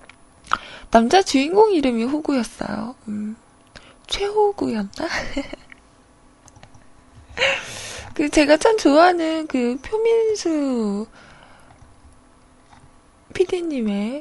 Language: Korean